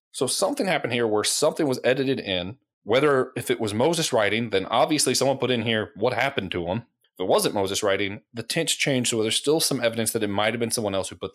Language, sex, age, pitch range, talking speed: English, male, 30-49, 105-150 Hz, 245 wpm